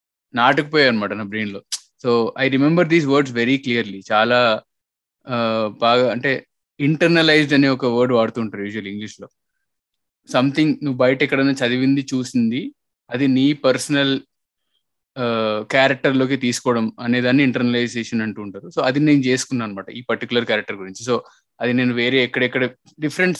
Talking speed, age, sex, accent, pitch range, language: 135 wpm, 20-39, male, native, 115-140 Hz, Telugu